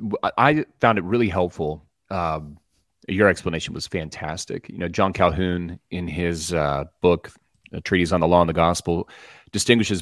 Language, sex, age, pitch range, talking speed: English, male, 30-49, 90-115 Hz, 155 wpm